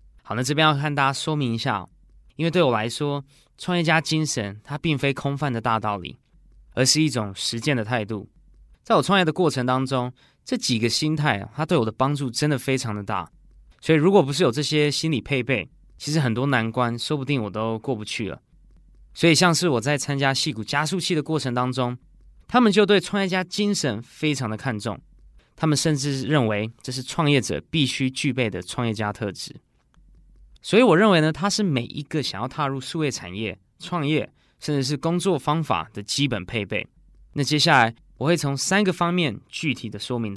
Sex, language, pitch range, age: male, Chinese, 120-155 Hz, 20-39